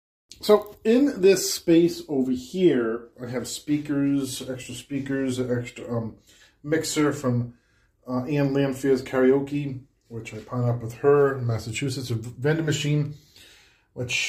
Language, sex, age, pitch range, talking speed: English, male, 40-59, 105-130 Hz, 135 wpm